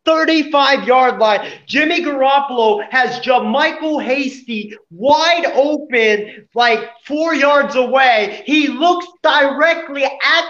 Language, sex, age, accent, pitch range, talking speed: English, male, 30-49, American, 245-310 Hz, 105 wpm